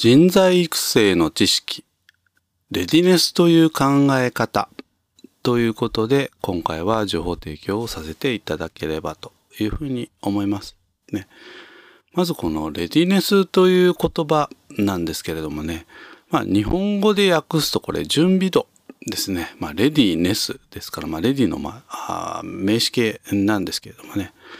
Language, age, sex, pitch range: Japanese, 40-59, male, 105-165 Hz